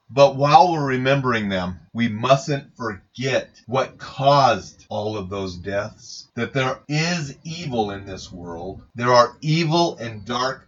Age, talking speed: 40-59, 145 wpm